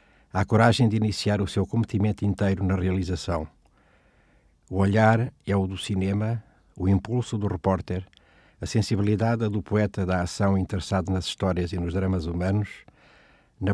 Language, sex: Portuguese, male